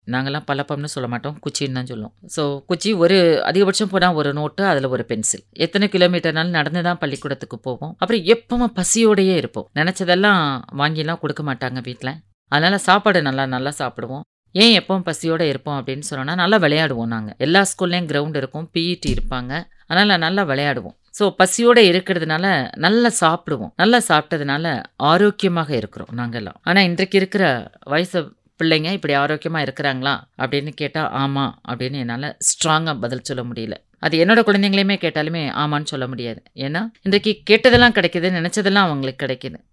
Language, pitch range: English, 140-180 Hz